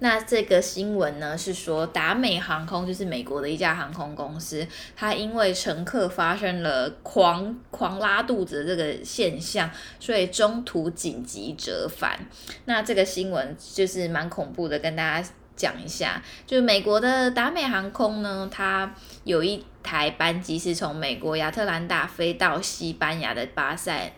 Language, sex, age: Chinese, female, 10-29